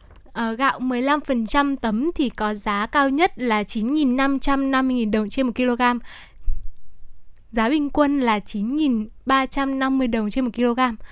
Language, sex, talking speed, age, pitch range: Vietnamese, female, 135 wpm, 10-29, 225-270 Hz